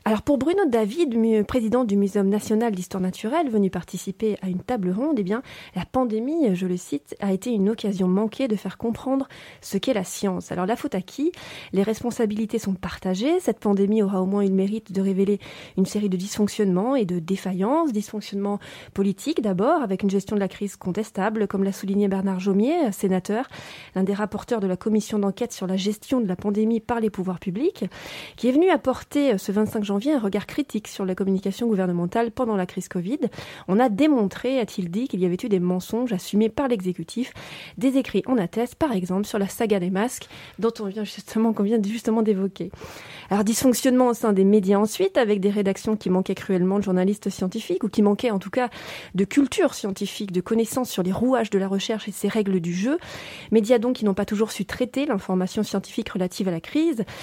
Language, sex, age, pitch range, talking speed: French, female, 30-49, 190-230 Hz, 210 wpm